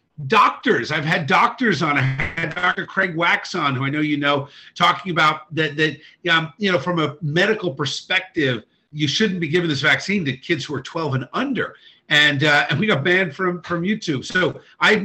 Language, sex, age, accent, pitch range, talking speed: English, male, 50-69, American, 145-180 Hz, 205 wpm